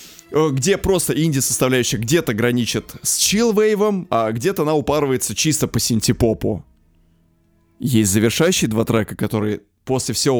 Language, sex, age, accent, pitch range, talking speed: Russian, male, 20-39, native, 110-155 Hz, 125 wpm